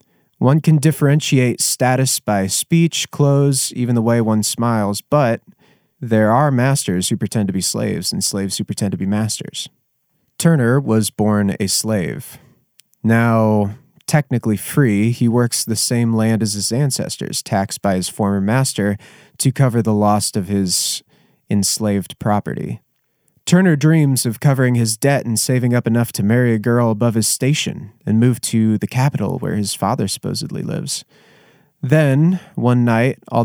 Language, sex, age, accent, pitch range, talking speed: English, male, 30-49, American, 105-135 Hz, 160 wpm